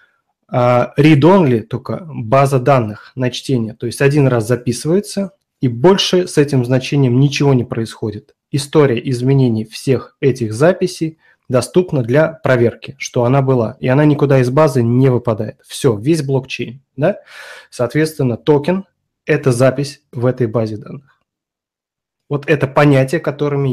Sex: male